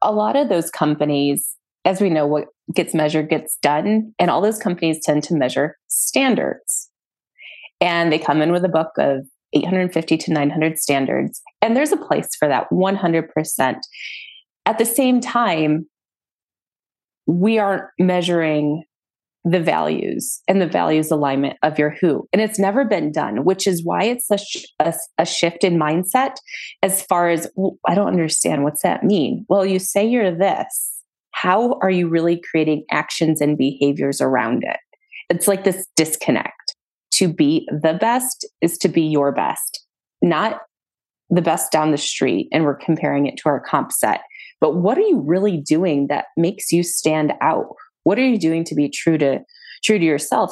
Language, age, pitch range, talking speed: English, 30-49, 155-200 Hz, 170 wpm